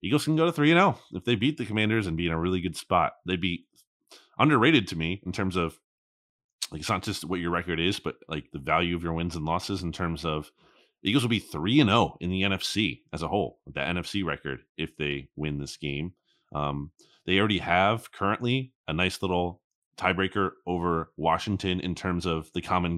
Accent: American